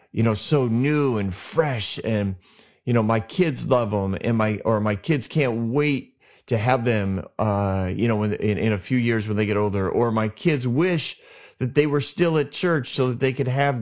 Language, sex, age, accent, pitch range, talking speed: English, male, 30-49, American, 105-135 Hz, 215 wpm